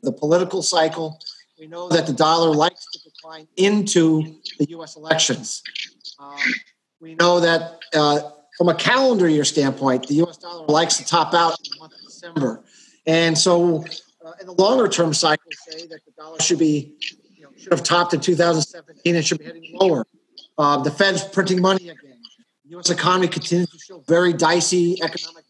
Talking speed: 185 wpm